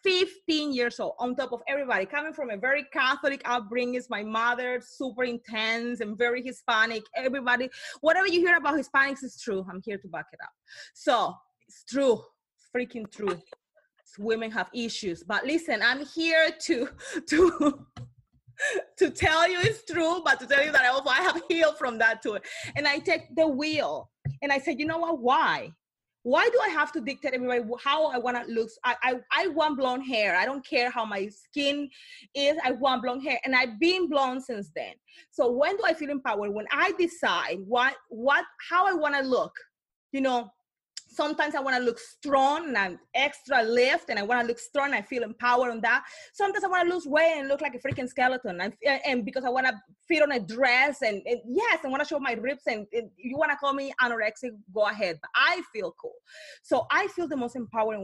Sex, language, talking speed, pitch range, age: female, English, 210 wpm, 235-310 Hz, 30-49